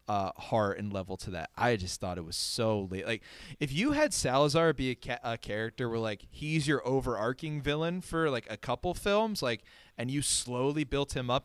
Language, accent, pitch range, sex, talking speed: English, American, 100-135 Hz, male, 210 wpm